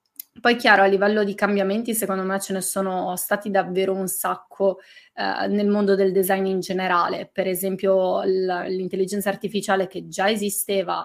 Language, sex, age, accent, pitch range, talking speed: Italian, female, 20-39, native, 190-205 Hz, 155 wpm